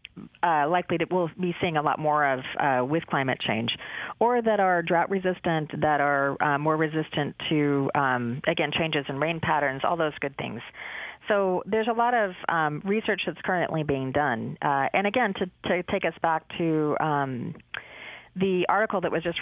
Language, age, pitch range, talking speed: English, 40-59, 145-180 Hz, 190 wpm